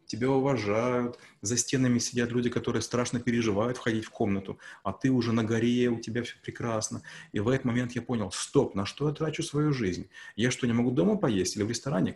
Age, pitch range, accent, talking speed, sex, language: 30-49, 105-125 Hz, native, 210 wpm, male, Russian